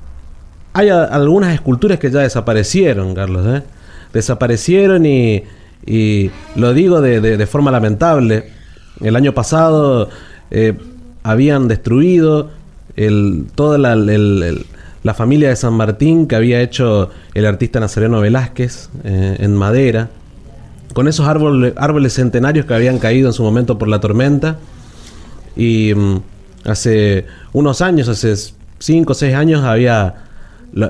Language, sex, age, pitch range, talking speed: Spanish, male, 30-49, 100-140 Hz, 140 wpm